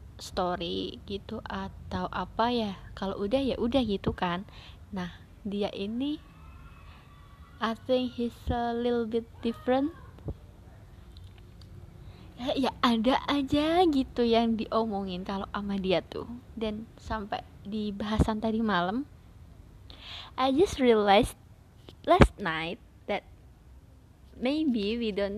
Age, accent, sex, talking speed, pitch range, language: 20-39, native, female, 110 wpm, 195-250 Hz, Indonesian